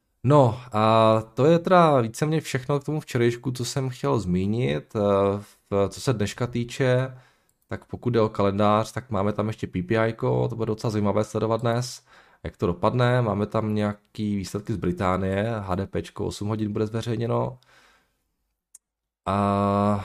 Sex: male